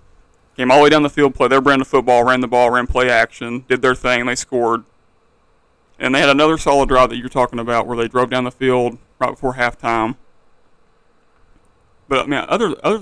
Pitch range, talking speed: 100-145 Hz, 215 wpm